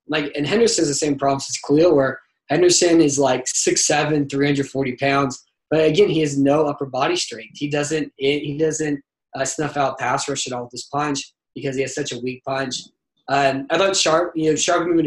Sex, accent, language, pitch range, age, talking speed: male, American, English, 130-155 Hz, 20-39, 210 wpm